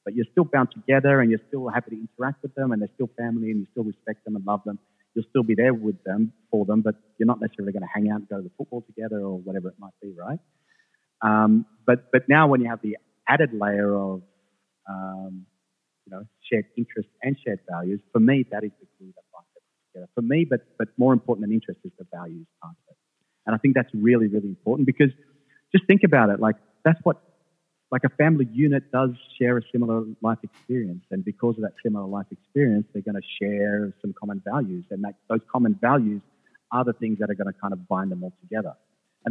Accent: Australian